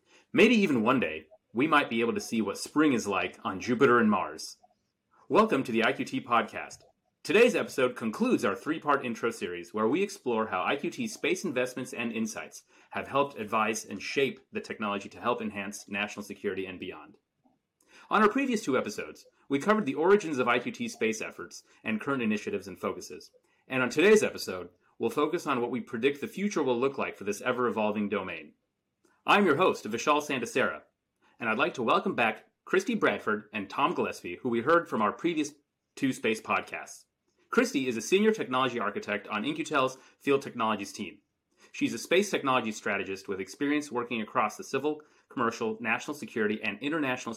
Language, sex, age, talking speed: English, male, 30-49, 180 wpm